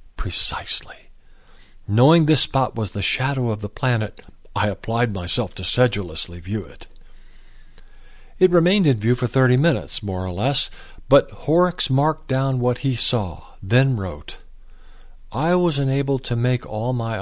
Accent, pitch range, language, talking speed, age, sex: American, 105-145 Hz, English, 150 wpm, 50-69, male